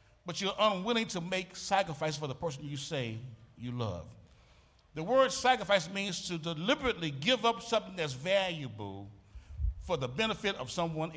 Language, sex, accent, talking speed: English, male, American, 155 wpm